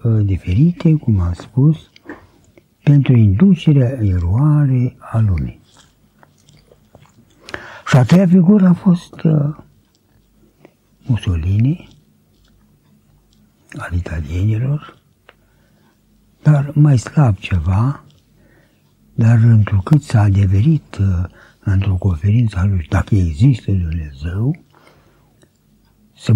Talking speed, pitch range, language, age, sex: 80 wpm, 95-140 Hz, Romanian, 60-79, male